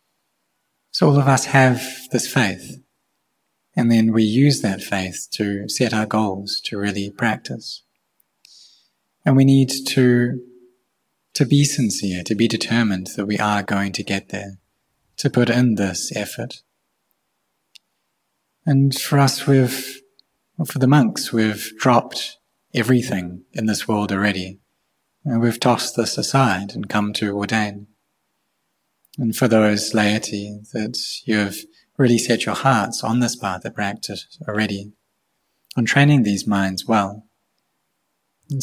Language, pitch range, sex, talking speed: English, 100-125 Hz, male, 135 wpm